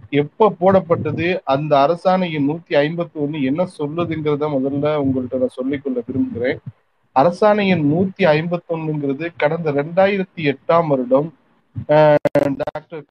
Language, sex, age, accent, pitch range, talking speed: Tamil, male, 40-59, native, 145-185 Hz, 110 wpm